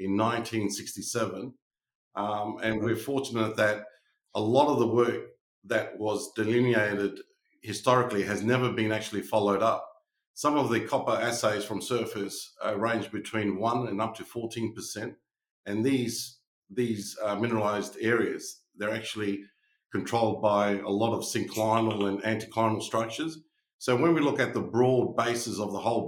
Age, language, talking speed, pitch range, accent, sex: 50-69, English, 150 wpm, 105-120 Hz, Australian, male